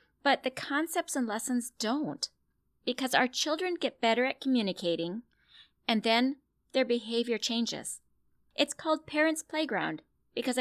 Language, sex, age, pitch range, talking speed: English, female, 30-49, 190-260 Hz, 130 wpm